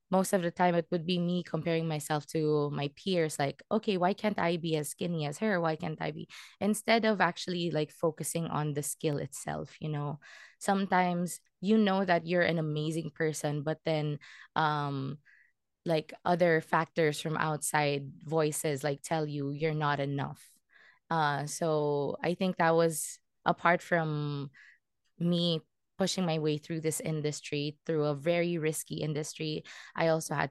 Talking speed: 165 wpm